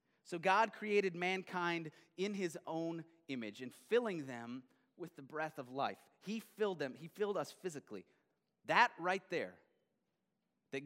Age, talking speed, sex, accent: 30-49, 150 wpm, male, American